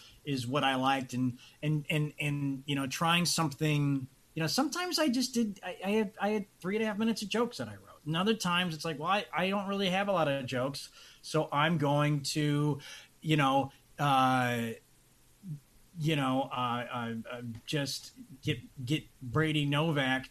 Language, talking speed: English, 190 wpm